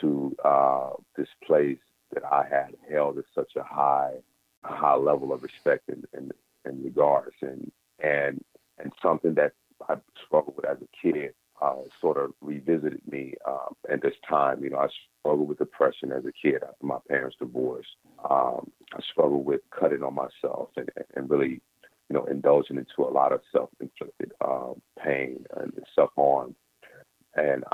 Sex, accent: male, American